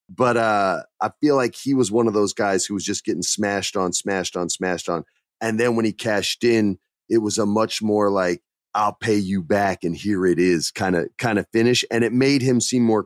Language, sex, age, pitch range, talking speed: English, male, 30-49, 110-160 Hz, 240 wpm